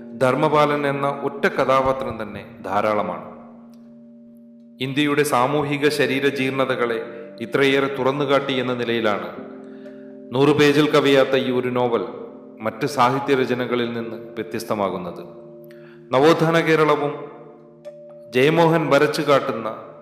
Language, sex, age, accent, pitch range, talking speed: Malayalam, male, 30-49, native, 115-140 Hz, 90 wpm